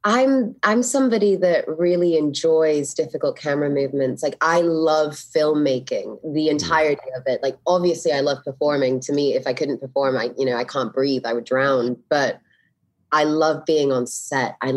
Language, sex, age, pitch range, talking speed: English, female, 20-39, 130-160 Hz, 180 wpm